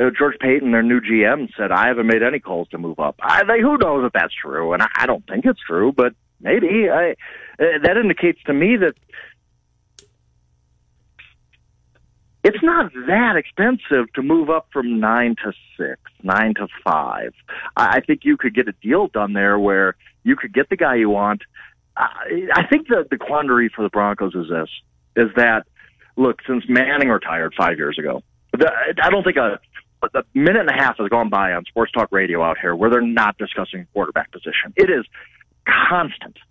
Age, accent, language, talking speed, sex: 40-59, American, English, 185 wpm, male